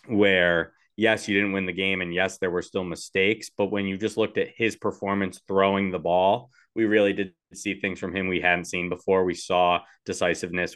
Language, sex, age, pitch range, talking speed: English, male, 20-39, 95-125 Hz, 210 wpm